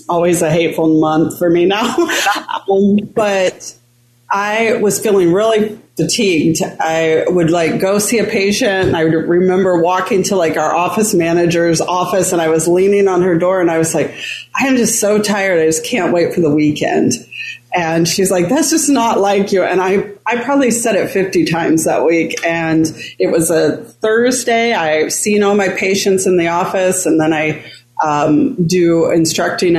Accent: American